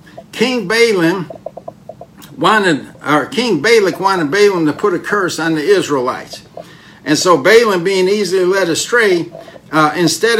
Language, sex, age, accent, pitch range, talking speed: English, male, 60-79, American, 165-220 Hz, 120 wpm